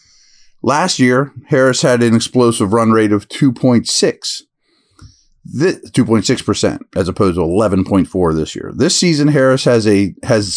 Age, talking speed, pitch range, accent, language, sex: 40-59, 130 wpm, 95-140 Hz, American, English, male